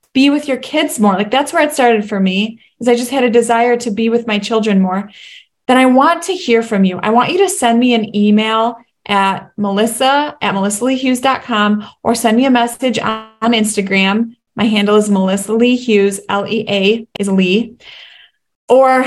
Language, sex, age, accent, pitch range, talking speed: English, female, 20-39, American, 205-245 Hz, 190 wpm